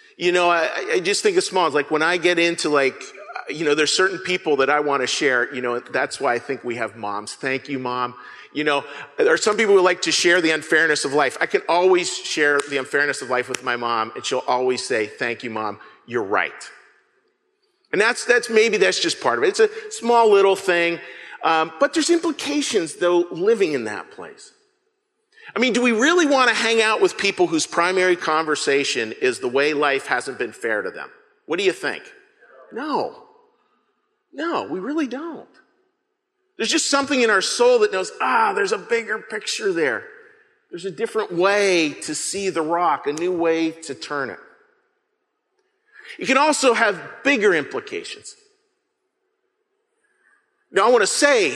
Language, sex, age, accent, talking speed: English, male, 40-59, American, 190 wpm